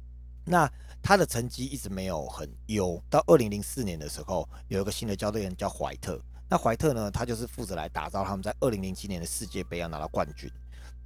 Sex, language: male, Chinese